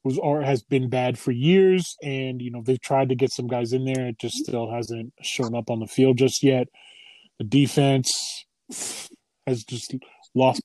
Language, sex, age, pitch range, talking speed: English, male, 20-39, 125-145 Hz, 190 wpm